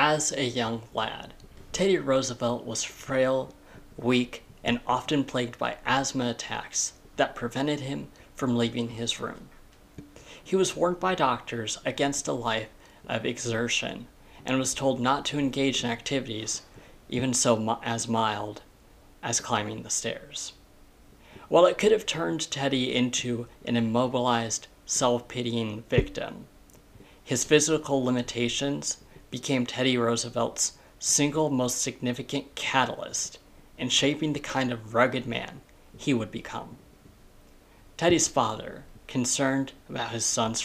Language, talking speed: English, 125 wpm